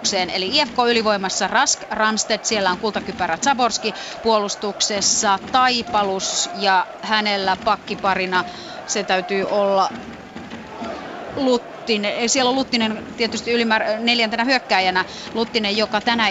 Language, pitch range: Finnish, 190-220 Hz